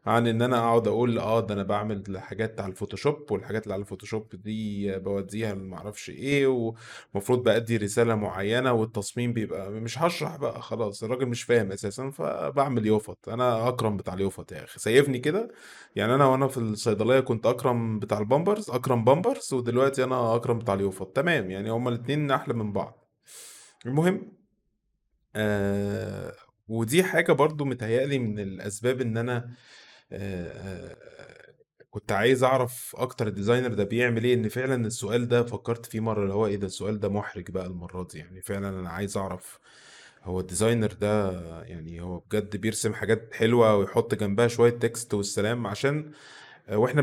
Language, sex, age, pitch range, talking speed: Arabic, male, 20-39, 100-125 Hz, 155 wpm